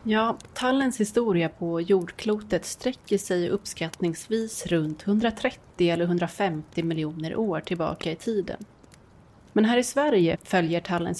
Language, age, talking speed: Swedish, 30-49, 125 wpm